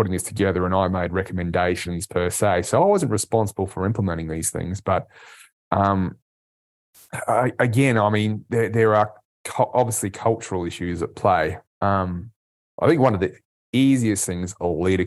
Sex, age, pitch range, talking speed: male, 20-39, 90-105 Hz, 155 wpm